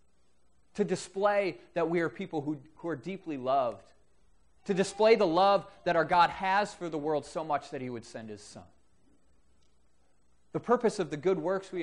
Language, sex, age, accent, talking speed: English, male, 30-49, American, 190 wpm